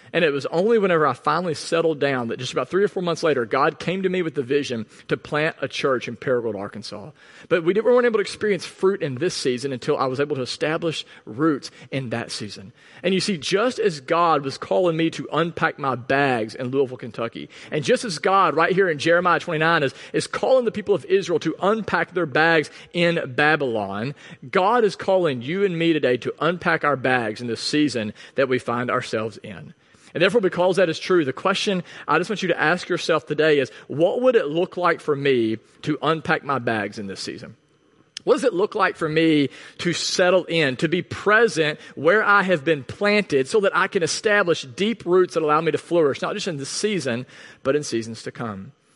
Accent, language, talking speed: American, English, 220 wpm